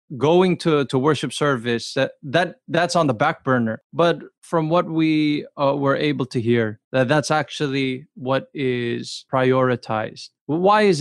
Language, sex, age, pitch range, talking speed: English, male, 20-39, 130-180 Hz, 160 wpm